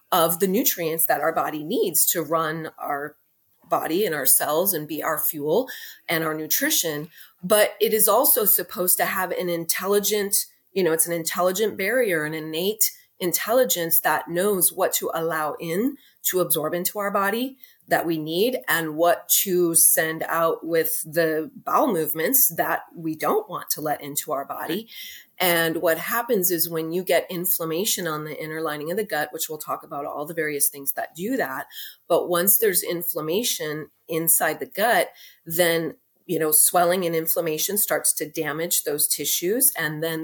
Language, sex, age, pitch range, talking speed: English, female, 30-49, 160-195 Hz, 175 wpm